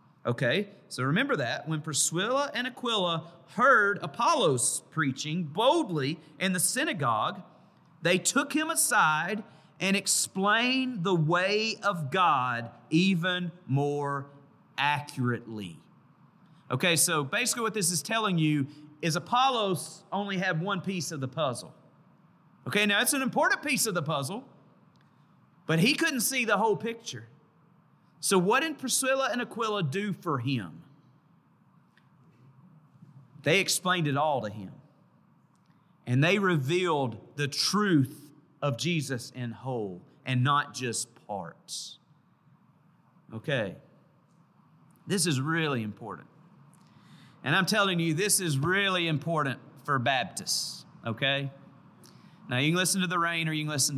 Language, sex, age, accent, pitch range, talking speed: English, male, 40-59, American, 145-190 Hz, 130 wpm